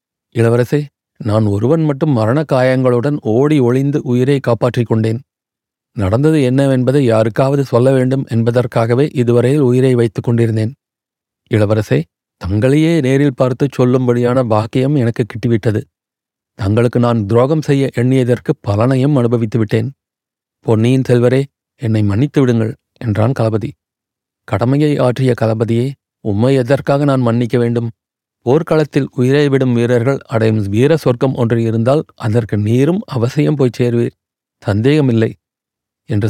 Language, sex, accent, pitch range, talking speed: Tamil, male, native, 115-135 Hz, 105 wpm